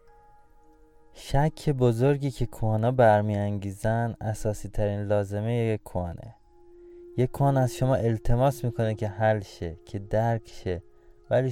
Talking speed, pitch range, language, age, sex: 125 wpm, 100-130 Hz, Persian, 20-39, male